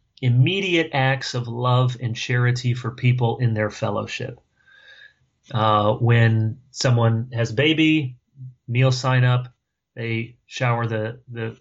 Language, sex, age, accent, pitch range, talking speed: English, male, 30-49, American, 115-130 Hz, 120 wpm